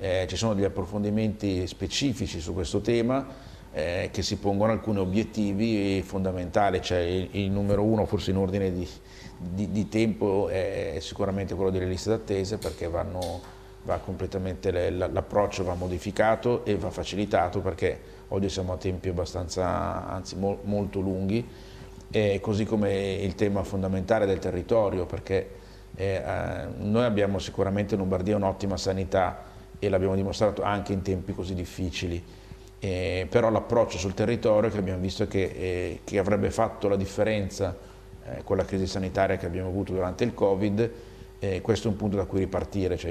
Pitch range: 95-105 Hz